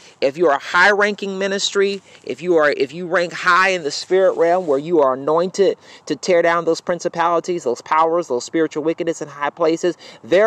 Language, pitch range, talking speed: English, 150-195 Hz, 200 wpm